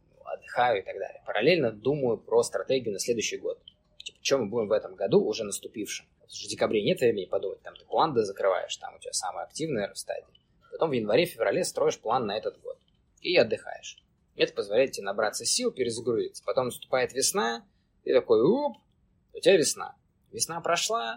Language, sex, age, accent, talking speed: Russian, male, 20-39, native, 175 wpm